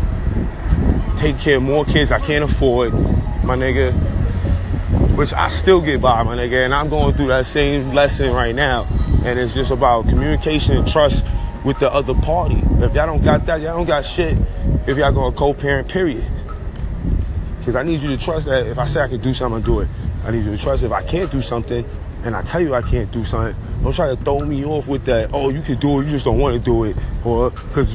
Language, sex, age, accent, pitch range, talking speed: English, male, 20-39, American, 95-145 Hz, 230 wpm